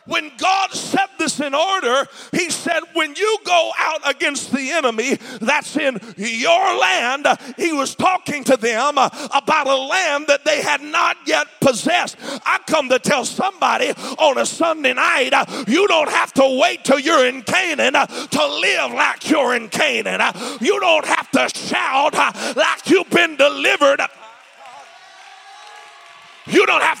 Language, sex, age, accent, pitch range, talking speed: English, male, 40-59, American, 275-345 Hz, 155 wpm